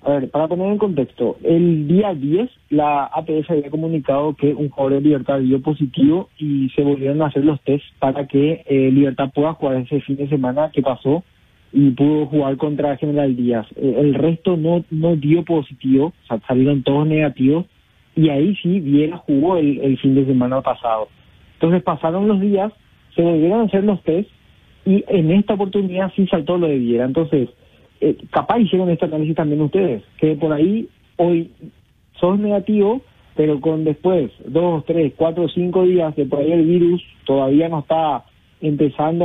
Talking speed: 180 wpm